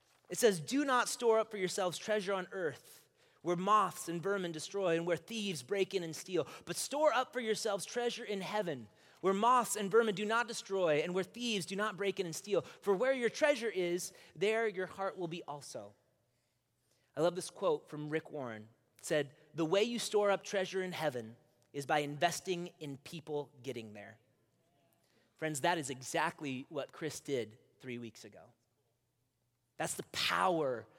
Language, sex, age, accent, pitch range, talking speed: English, male, 30-49, American, 140-205 Hz, 185 wpm